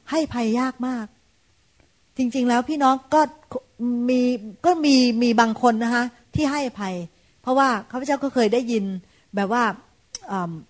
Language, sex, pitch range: Thai, female, 205-265 Hz